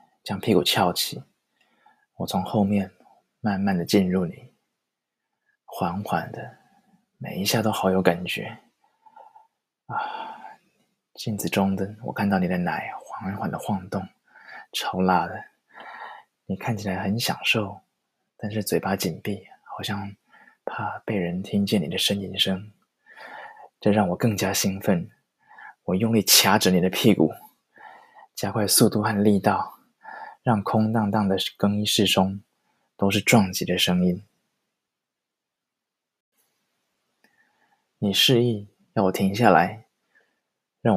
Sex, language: male, Chinese